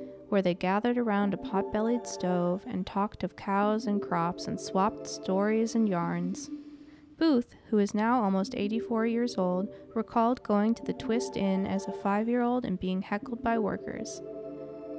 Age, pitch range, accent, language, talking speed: 20-39, 185-220 Hz, American, English, 160 wpm